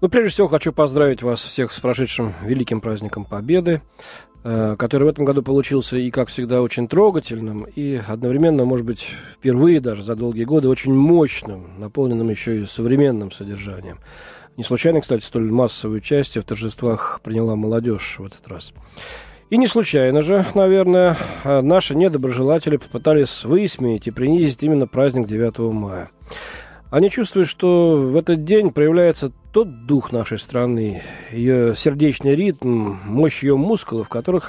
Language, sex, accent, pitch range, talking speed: Russian, male, native, 115-155 Hz, 150 wpm